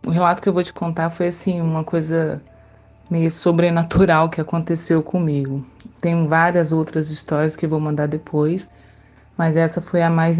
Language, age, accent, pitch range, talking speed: Portuguese, 20-39, Brazilian, 165-195 Hz, 165 wpm